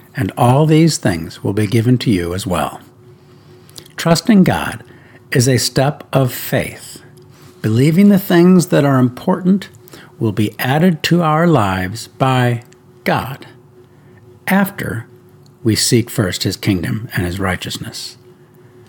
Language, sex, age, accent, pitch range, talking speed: English, male, 60-79, American, 115-140 Hz, 130 wpm